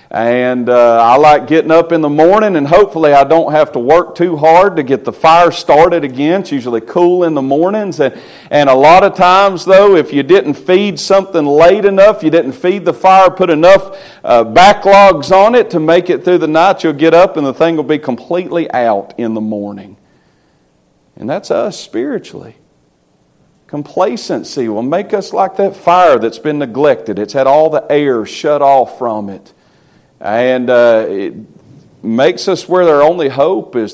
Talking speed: 190 wpm